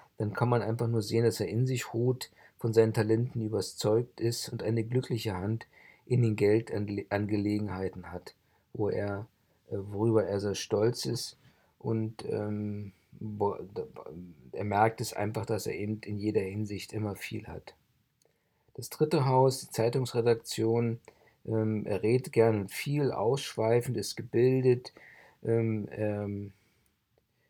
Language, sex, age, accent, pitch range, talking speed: German, male, 50-69, German, 105-120 Hz, 135 wpm